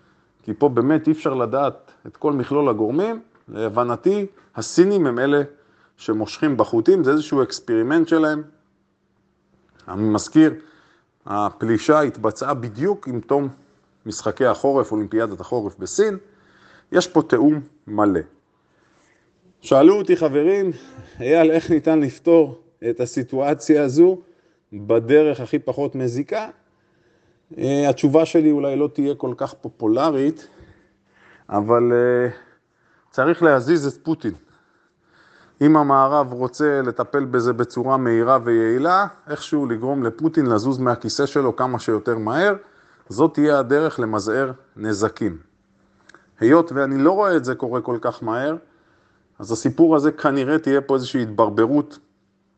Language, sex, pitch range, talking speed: Hebrew, male, 120-155 Hz, 120 wpm